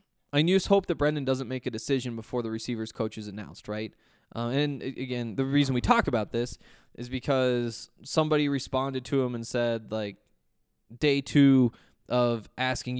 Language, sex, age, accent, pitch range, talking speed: English, male, 20-39, American, 115-140 Hz, 175 wpm